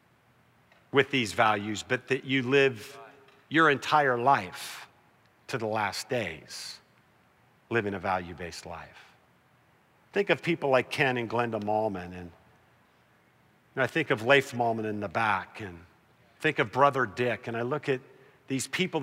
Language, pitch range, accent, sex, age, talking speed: English, 110-140 Hz, American, male, 50-69, 145 wpm